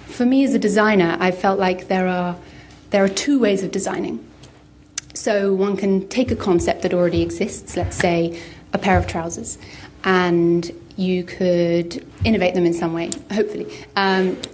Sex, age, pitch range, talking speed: female, 30-49, 170-205 Hz, 170 wpm